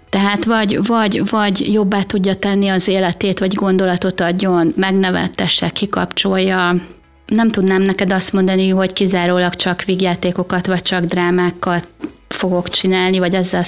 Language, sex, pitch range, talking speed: Hungarian, female, 180-200 Hz, 130 wpm